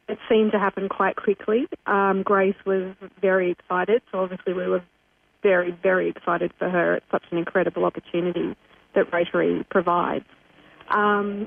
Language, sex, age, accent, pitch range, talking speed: English, female, 30-49, Australian, 185-205 Hz, 150 wpm